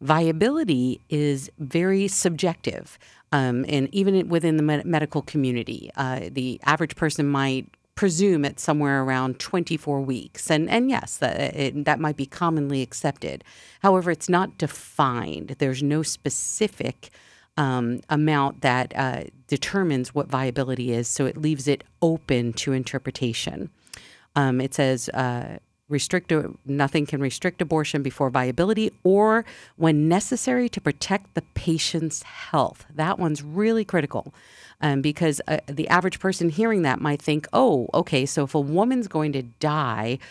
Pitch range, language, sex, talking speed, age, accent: 135-175 Hz, English, female, 145 wpm, 50-69, American